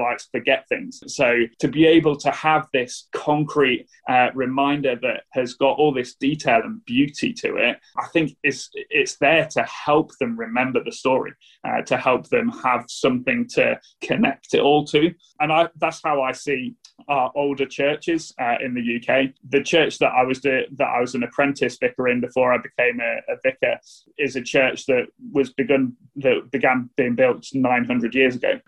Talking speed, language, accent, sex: 185 wpm, English, British, male